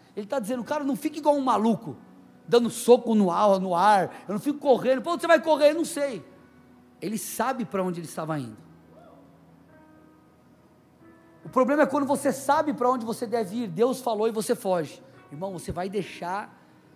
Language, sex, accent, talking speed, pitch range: Portuguese, male, Brazilian, 190 wpm, 195-275 Hz